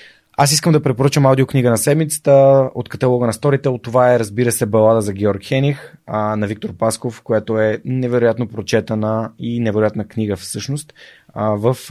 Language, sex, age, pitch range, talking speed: Bulgarian, male, 20-39, 110-135 Hz, 160 wpm